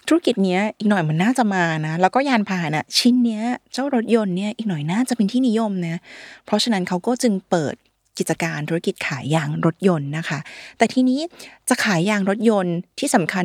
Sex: female